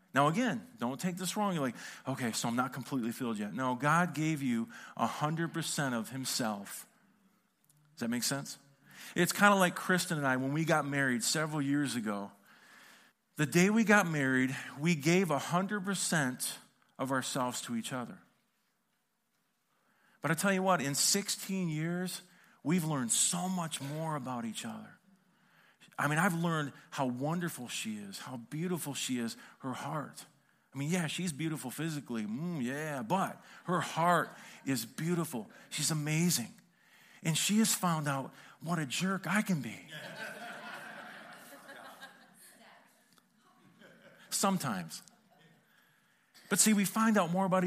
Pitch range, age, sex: 145-205 Hz, 40-59, male